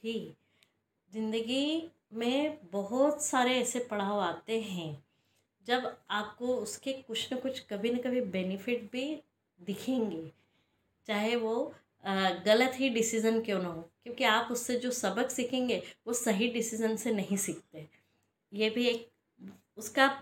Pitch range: 210-270 Hz